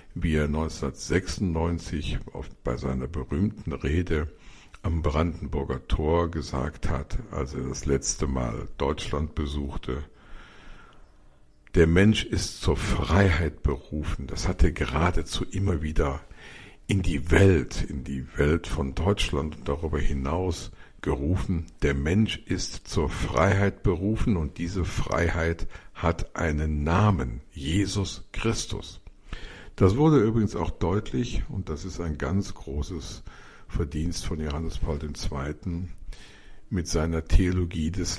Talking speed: 120 wpm